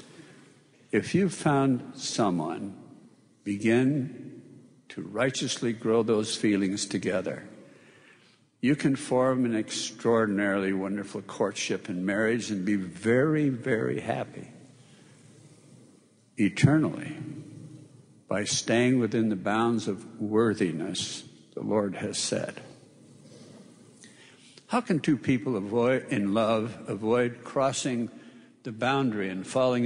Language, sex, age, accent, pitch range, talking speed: English, male, 60-79, American, 110-140 Hz, 100 wpm